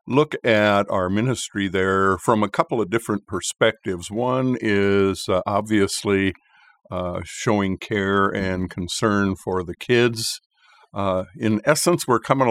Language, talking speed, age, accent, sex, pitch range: English, 135 wpm, 60-79, American, male, 95-115 Hz